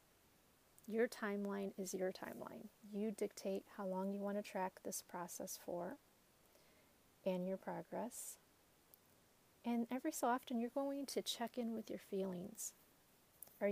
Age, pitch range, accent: 30-49, 190-220 Hz, American